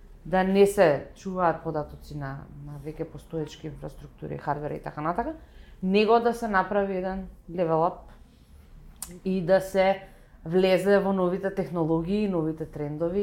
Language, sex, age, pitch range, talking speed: English, female, 30-49, 165-200 Hz, 130 wpm